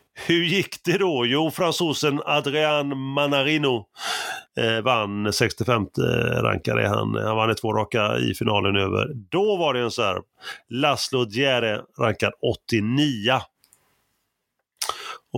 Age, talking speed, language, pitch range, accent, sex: 30-49, 115 wpm, Swedish, 110-140 Hz, native, male